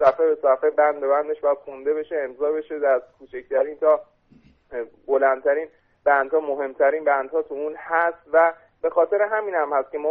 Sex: male